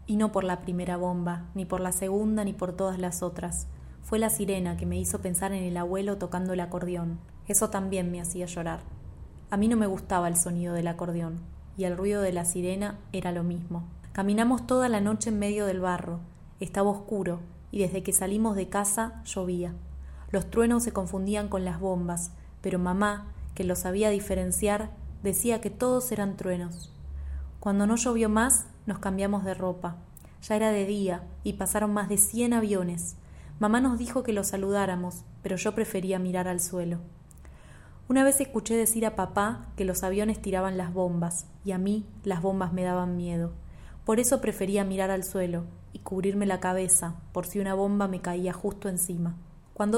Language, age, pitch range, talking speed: Spanish, 20-39, 180-205 Hz, 185 wpm